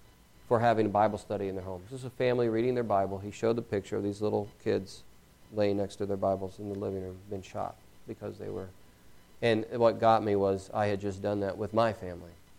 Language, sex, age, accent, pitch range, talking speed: English, male, 40-59, American, 100-125 Hz, 235 wpm